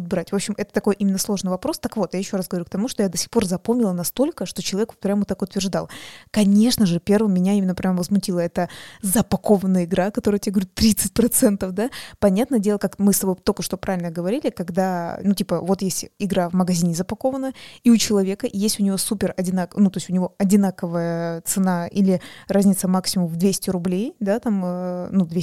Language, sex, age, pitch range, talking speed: Russian, female, 20-39, 180-210 Hz, 205 wpm